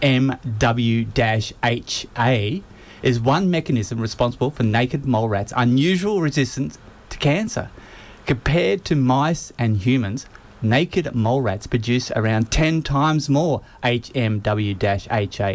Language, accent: English, Australian